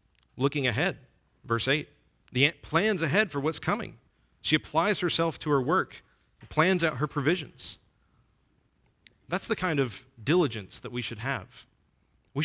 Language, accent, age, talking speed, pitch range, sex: English, American, 40-59, 150 wpm, 110-140 Hz, male